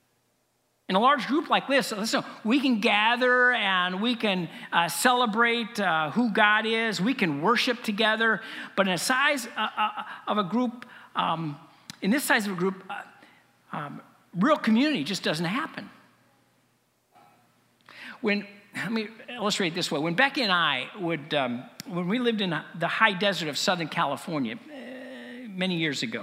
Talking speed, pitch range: 165 wpm, 185-245 Hz